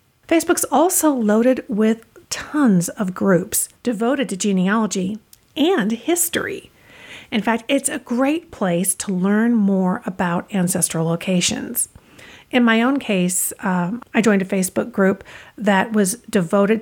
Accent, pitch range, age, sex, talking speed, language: American, 195-255 Hz, 50-69, female, 130 wpm, English